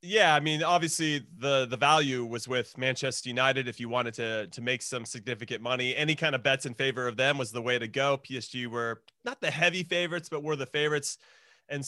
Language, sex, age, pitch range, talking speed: English, male, 30-49, 140-180 Hz, 220 wpm